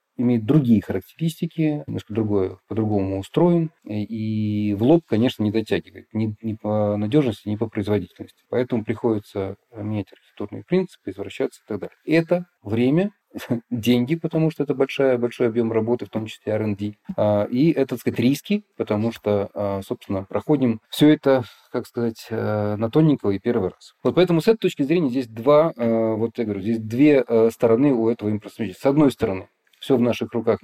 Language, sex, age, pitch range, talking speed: Russian, male, 30-49, 105-135 Hz, 165 wpm